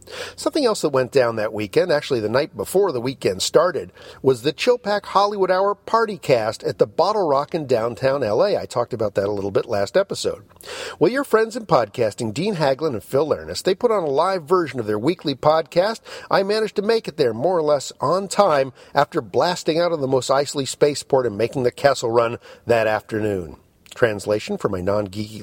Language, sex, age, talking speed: English, male, 50-69, 205 wpm